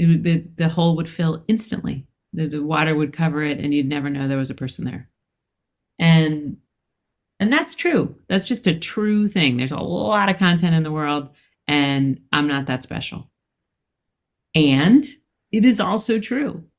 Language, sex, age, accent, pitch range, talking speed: English, female, 40-59, American, 155-195 Hz, 170 wpm